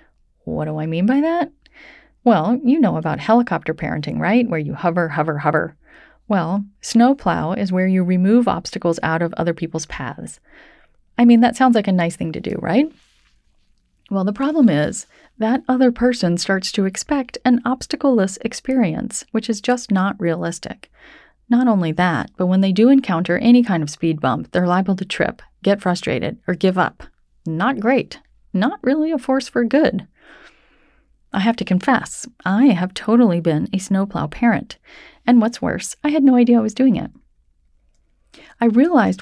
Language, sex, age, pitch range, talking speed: English, female, 30-49, 170-245 Hz, 175 wpm